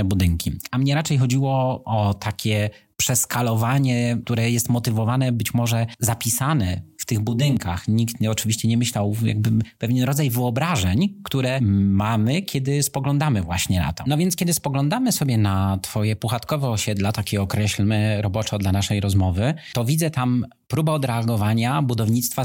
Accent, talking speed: native, 140 wpm